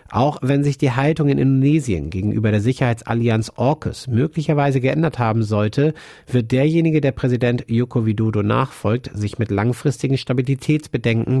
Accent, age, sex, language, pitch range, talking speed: German, 50-69, male, German, 110-135 Hz, 135 wpm